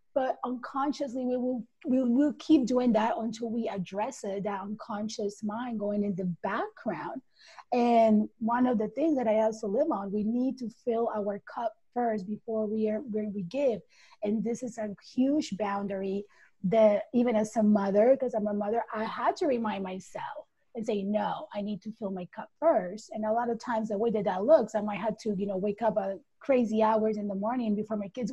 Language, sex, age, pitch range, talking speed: English, female, 30-49, 200-235 Hz, 210 wpm